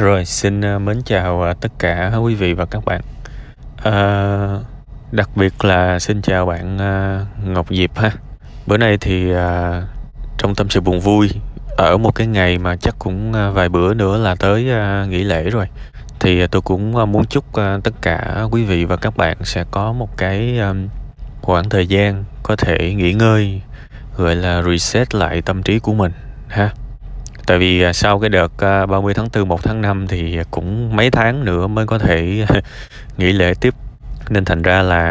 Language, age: Vietnamese, 20-39